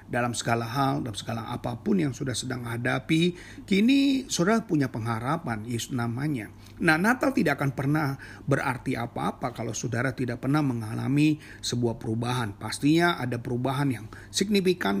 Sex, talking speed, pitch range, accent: male, 135 wpm, 115-150 Hz, native